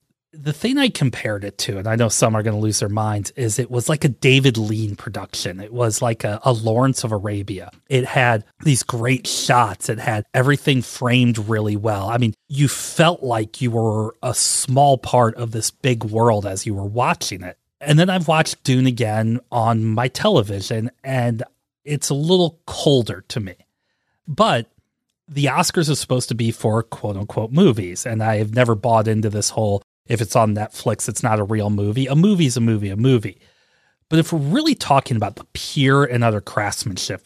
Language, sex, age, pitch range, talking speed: English, male, 30-49, 110-135 Hz, 200 wpm